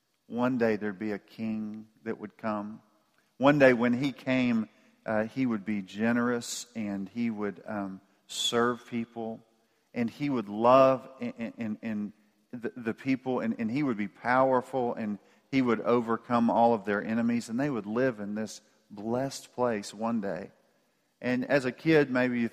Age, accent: 40-59, American